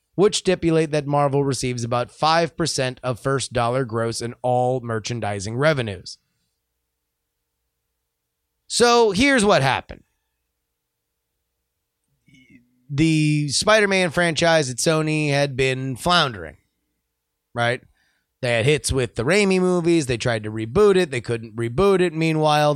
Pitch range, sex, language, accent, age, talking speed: 110-165 Hz, male, English, American, 30-49, 115 wpm